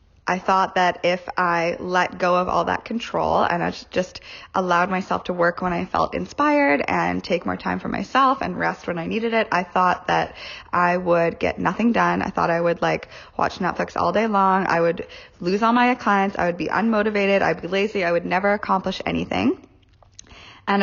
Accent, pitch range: American, 175-210 Hz